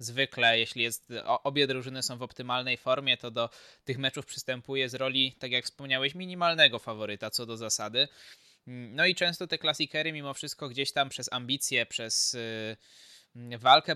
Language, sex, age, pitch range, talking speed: Polish, male, 20-39, 115-140 Hz, 160 wpm